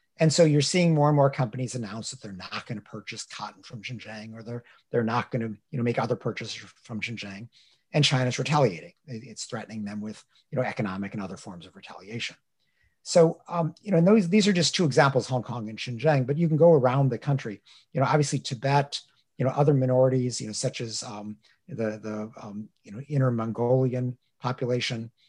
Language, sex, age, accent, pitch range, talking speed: English, male, 50-69, American, 110-140 Hz, 205 wpm